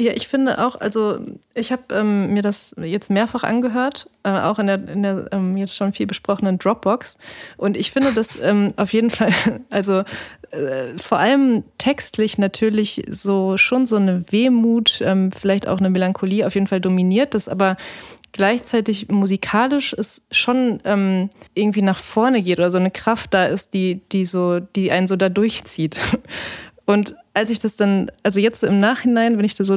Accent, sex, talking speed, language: German, female, 185 wpm, German